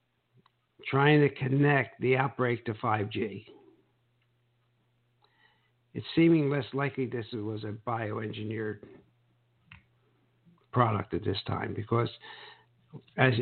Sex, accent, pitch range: male, American, 110-145 Hz